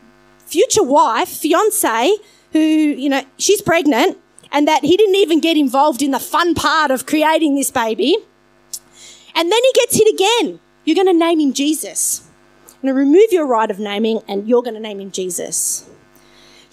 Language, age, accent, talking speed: English, 30-49, Australian, 185 wpm